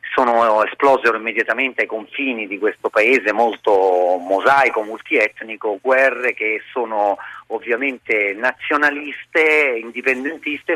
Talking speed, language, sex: 95 wpm, Italian, male